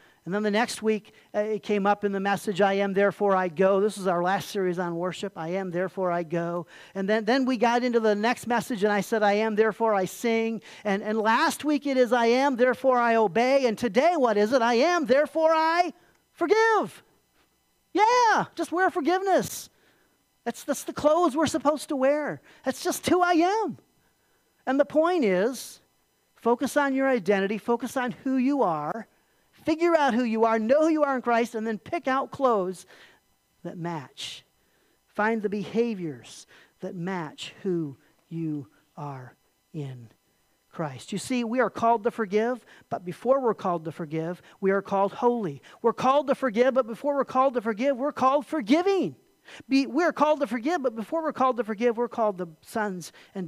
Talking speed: 190 wpm